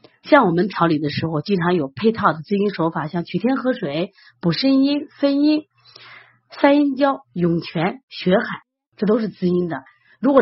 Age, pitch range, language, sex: 30-49, 165-240 Hz, Chinese, female